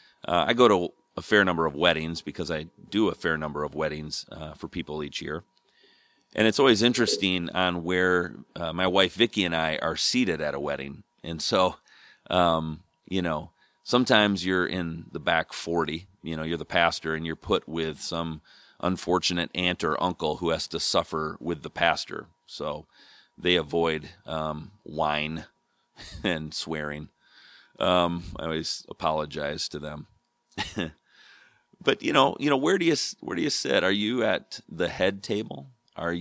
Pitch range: 80-90 Hz